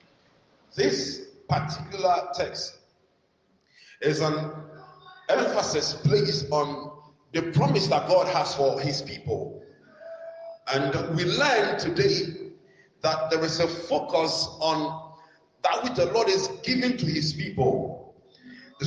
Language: English